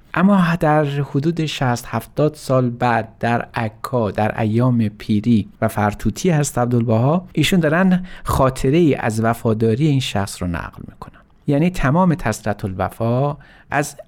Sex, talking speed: male, 135 wpm